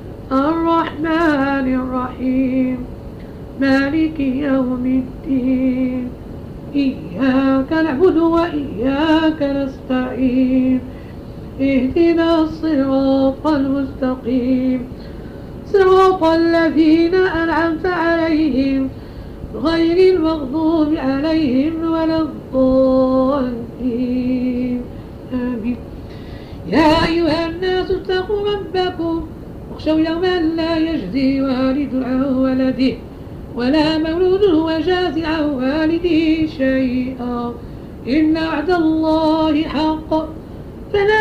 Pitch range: 265-325 Hz